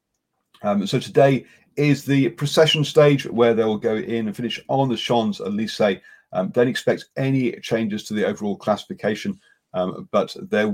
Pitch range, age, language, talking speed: 100-145 Hz, 30-49, English, 160 wpm